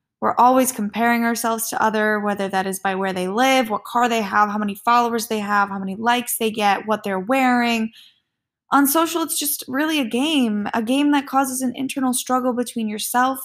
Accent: American